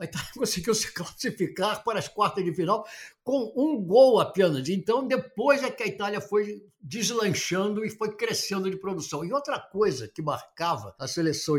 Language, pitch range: Portuguese, 170-240 Hz